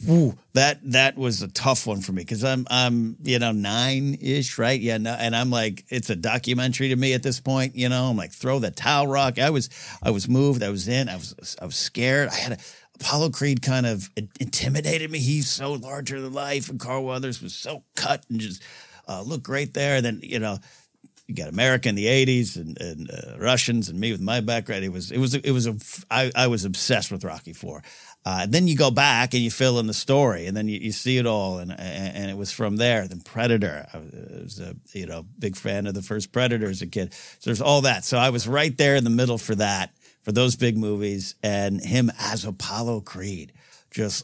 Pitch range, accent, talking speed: 105-130 Hz, American, 240 wpm